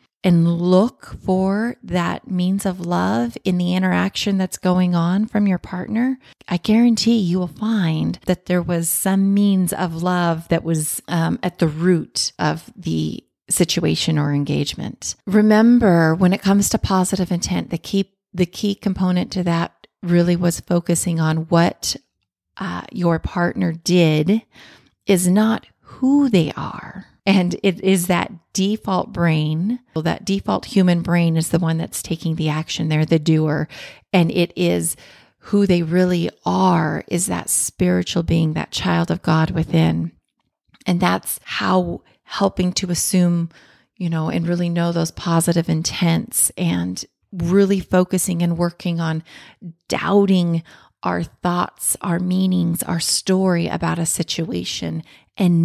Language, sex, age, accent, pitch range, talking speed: English, female, 30-49, American, 165-190 Hz, 145 wpm